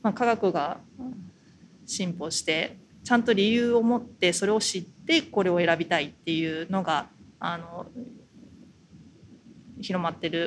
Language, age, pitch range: Japanese, 20-39, 170-225 Hz